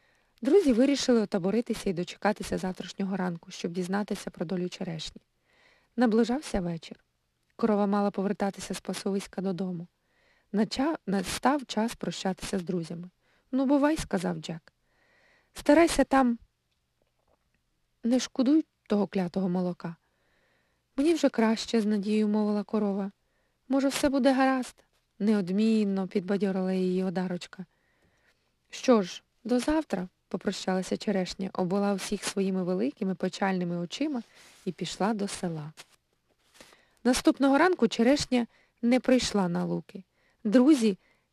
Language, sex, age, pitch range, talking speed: Ukrainian, female, 20-39, 185-235 Hz, 115 wpm